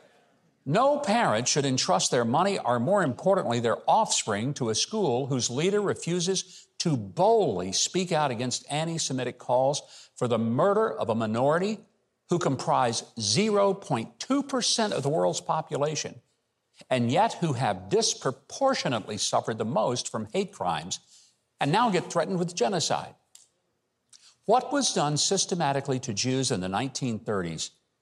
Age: 60-79